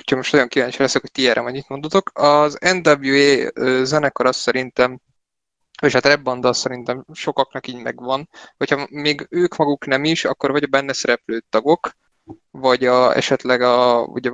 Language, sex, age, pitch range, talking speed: Hungarian, male, 20-39, 125-140 Hz, 165 wpm